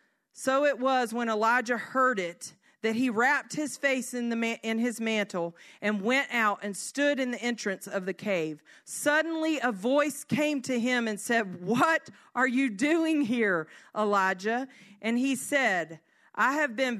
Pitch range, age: 200-265 Hz, 40-59